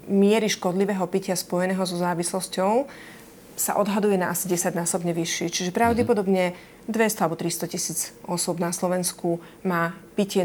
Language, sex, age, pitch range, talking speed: Slovak, female, 30-49, 175-210 Hz, 140 wpm